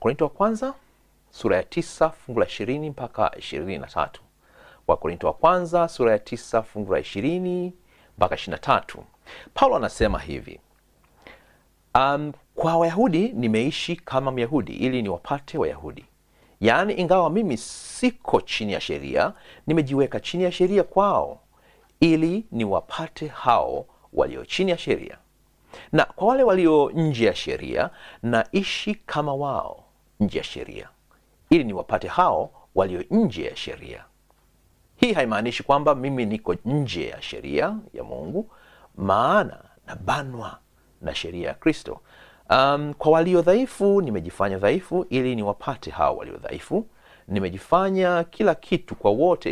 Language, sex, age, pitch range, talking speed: Swahili, male, 40-59, 125-180 Hz, 130 wpm